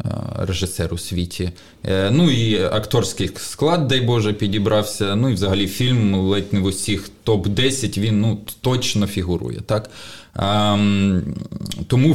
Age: 20-39